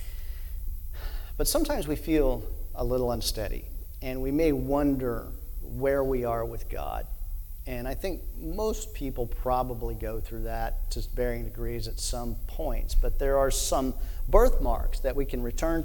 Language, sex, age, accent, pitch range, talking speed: English, male, 40-59, American, 80-130 Hz, 150 wpm